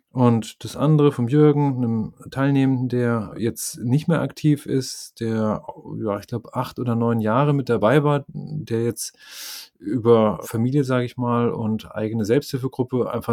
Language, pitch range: German, 110-130 Hz